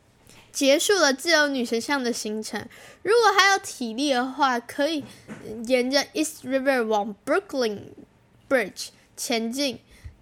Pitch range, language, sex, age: 230-300 Hz, Chinese, female, 10-29